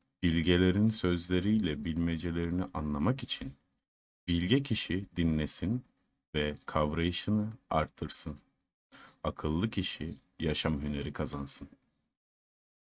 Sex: male